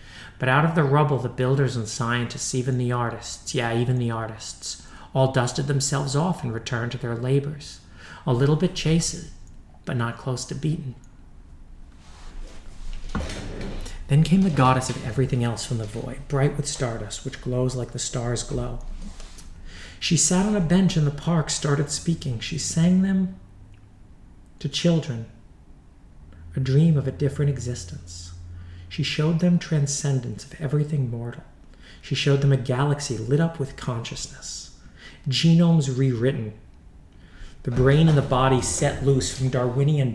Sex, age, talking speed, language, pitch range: male, 40-59, 150 wpm, English, 115-145 Hz